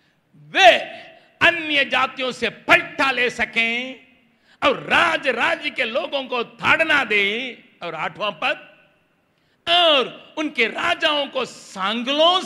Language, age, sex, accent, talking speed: Hindi, 60-79, male, native, 110 wpm